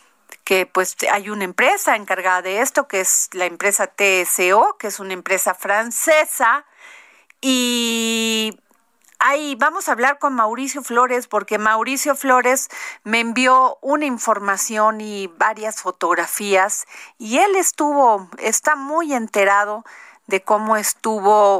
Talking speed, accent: 125 wpm, Mexican